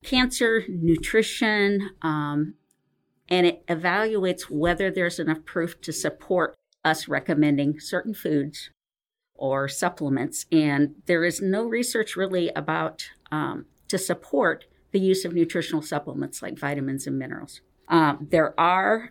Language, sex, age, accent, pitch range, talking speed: English, female, 50-69, American, 150-195 Hz, 125 wpm